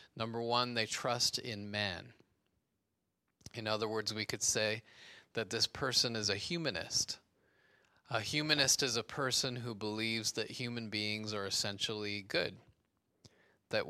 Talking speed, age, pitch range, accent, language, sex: 140 wpm, 30-49, 105-130 Hz, American, English, male